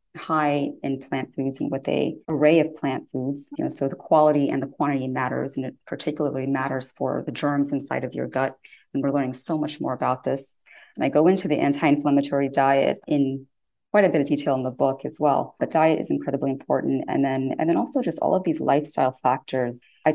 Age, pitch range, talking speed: 30-49, 135-150 Hz, 220 wpm